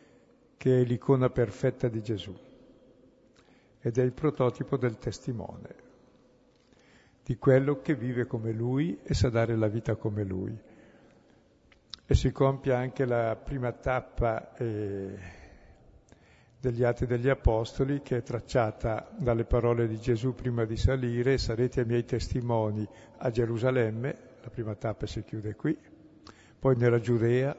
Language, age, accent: Italian, 60-79, native